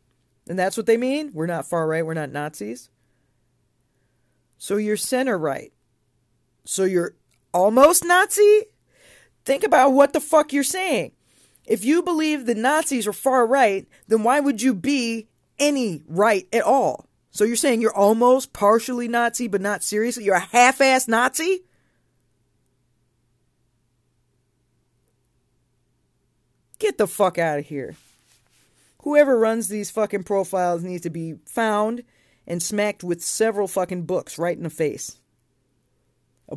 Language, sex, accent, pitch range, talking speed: English, female, American, 145-240 Hz, 140 wpm